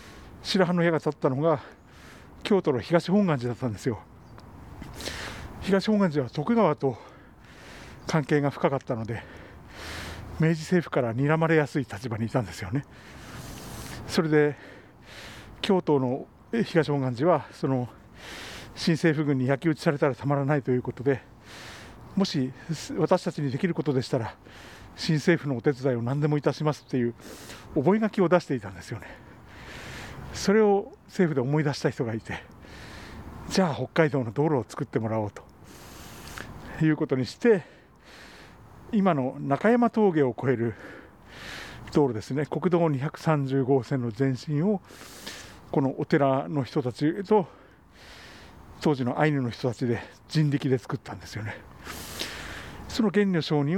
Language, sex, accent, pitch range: Japanese, male, native, 120-160 Hz